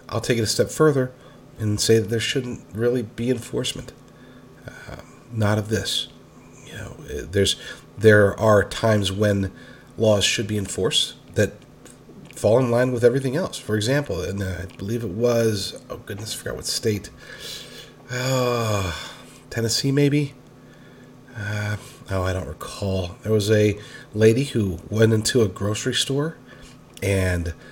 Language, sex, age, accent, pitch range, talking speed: English, male, 40-59, American, 105-125 Hz, 150 wpm